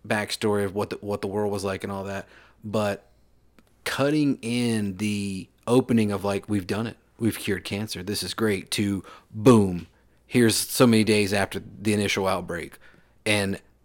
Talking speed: 170 wpm